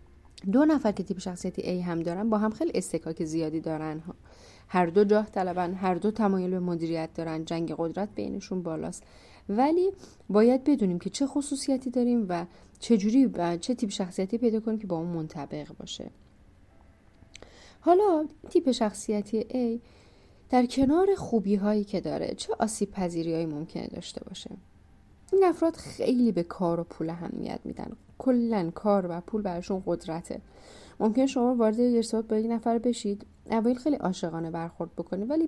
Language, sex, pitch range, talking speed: Persian, female, 170-230 Hz, 160 wpm